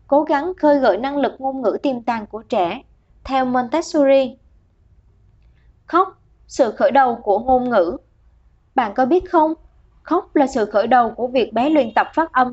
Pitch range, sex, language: 245-305 Hz, male, Vietnamese